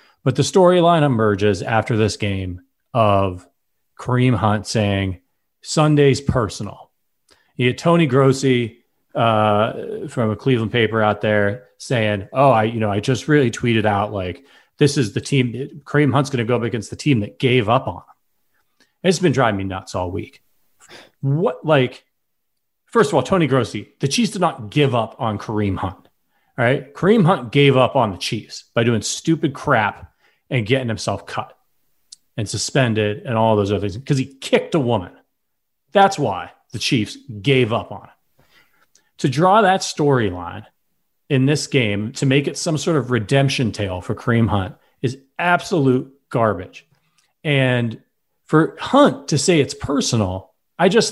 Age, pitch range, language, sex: 30-49, 110-155 Hz, English, male